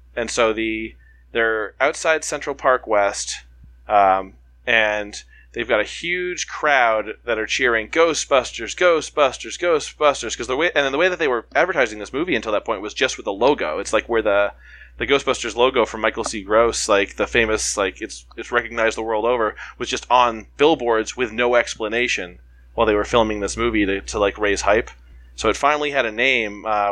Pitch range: 105-125 Hz